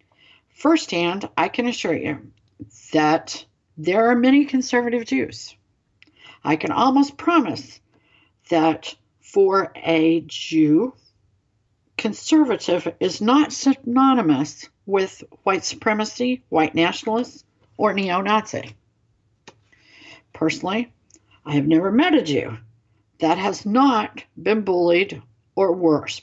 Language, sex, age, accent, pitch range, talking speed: English, female, 60-79, American, 135-185 Hz, 105 wpm